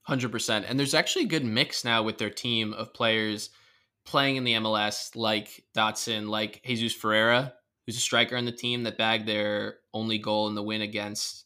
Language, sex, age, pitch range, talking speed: English, male, 10-29, 110-125 Hz, 195 wpm